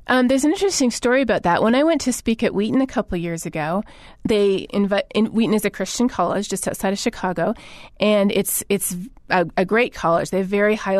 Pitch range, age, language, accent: 190-235 Hz, 30-49, English, American